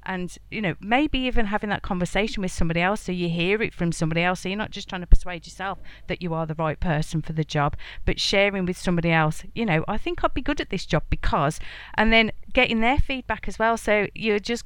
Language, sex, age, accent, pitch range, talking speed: English, female, 40-59, British, 170-205 Hz, 250 wpm